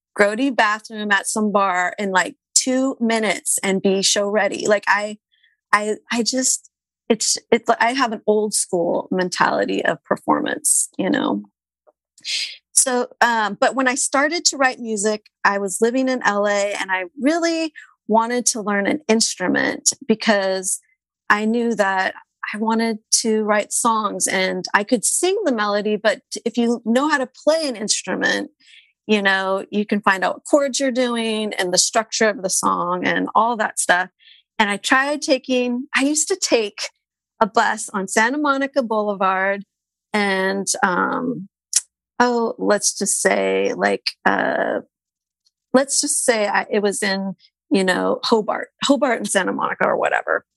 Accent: American